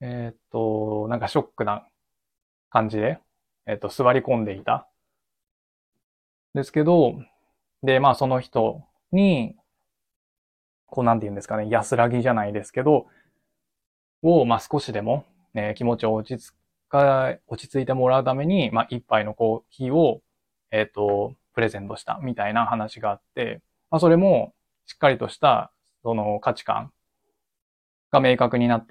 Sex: male